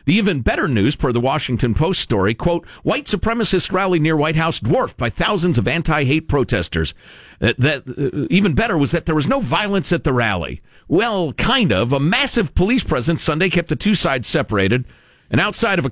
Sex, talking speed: male, 195 wpm